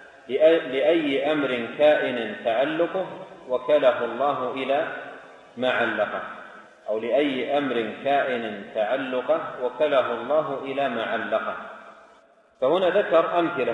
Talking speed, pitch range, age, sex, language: 90 wpm, 130-155 Hz, 40-59, male, Arabic